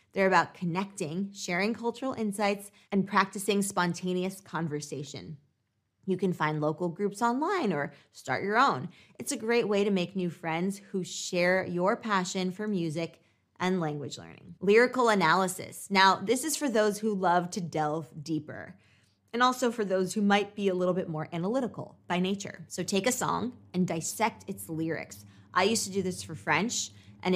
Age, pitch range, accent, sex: 20-39, 165-205 Hz, American, female